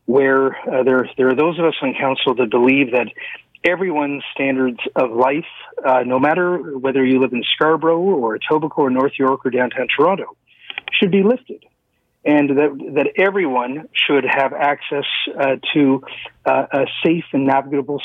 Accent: American